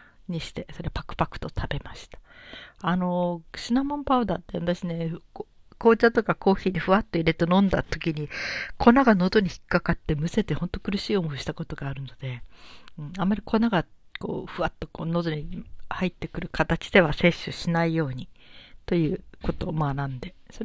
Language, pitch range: Japanese, 155-200 Hz